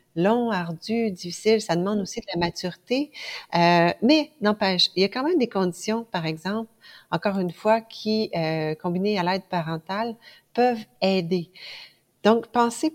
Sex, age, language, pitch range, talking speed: female, 40-59, French, 170-225 Hz, 160 wpm